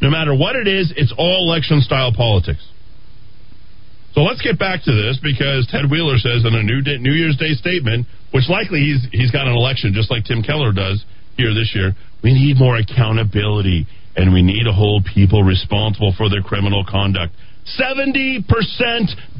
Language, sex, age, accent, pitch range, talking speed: English, male, 40-59, American, 105-160 Hz, 180 wpm